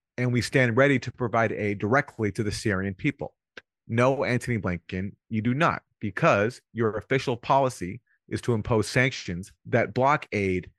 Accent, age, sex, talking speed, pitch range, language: American, 30-49, male, 160 wpm, 105-125 Hz, English